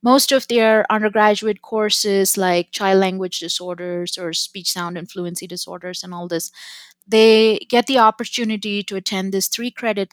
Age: 30-49